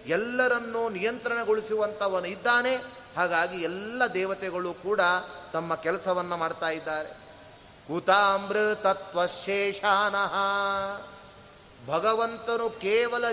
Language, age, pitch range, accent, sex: Kannada, 30-49, 195-235 Hz, native, male